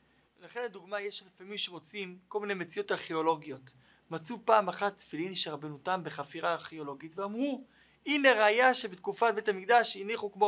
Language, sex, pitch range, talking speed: Hebrew, male, 200-265 Hz, 145 wpm